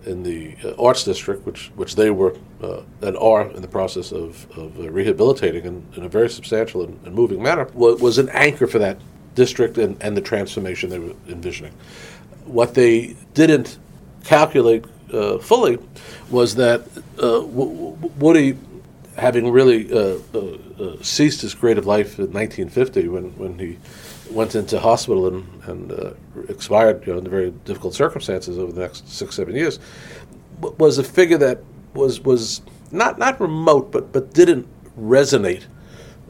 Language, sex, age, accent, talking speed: English, male, 50-69, American, 160 wpm